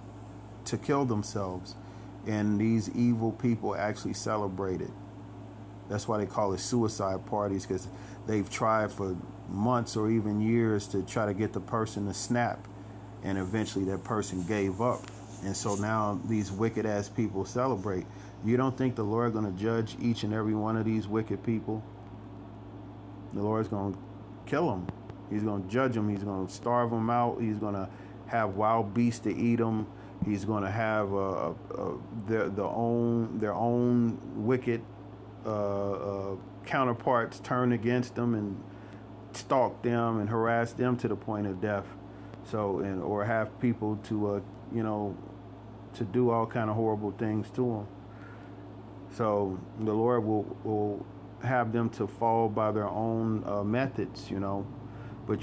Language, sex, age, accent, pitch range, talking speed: English, male, 40-59, American, 100-115 Hz, 160 wpm